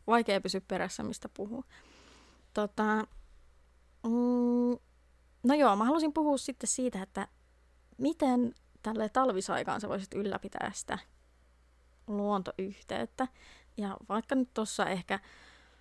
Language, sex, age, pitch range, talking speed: Finnish, female, 20-39, 190-235 Hz, 105 wpm